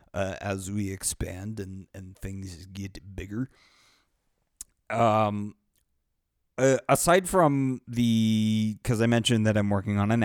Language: English